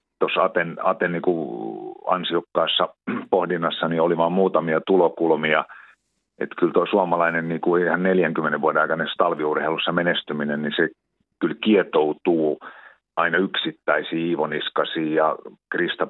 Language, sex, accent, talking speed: Finnish, male, native, 125 wpm